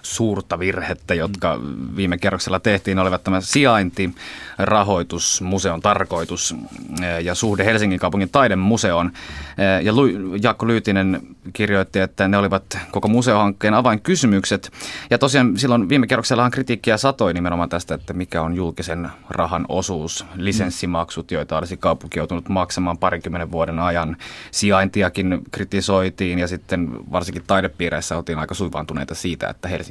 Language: Finnish